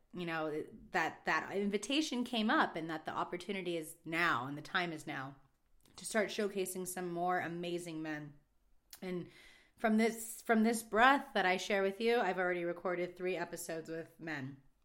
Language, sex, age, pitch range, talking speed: English, female, 30-49, 155-185 Hz, 175 wpm